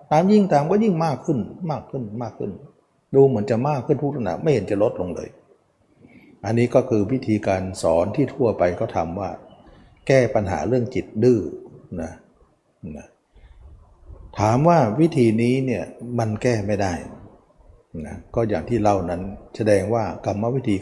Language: Thai